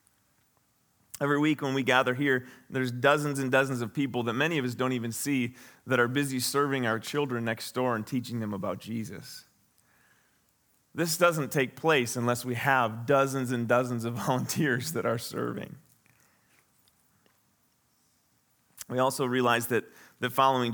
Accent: American